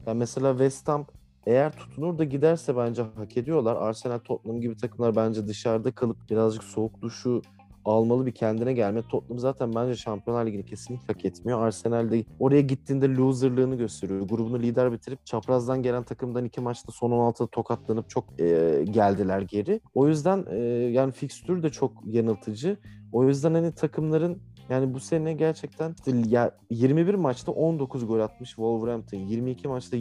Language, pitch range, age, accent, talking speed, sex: Turkish, 115-140 Hz, 30-49, native, 150 wpm, male